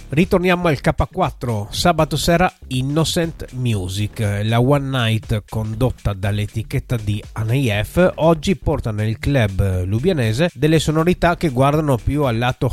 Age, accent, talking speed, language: 30-49, native, 125 wpm, Italian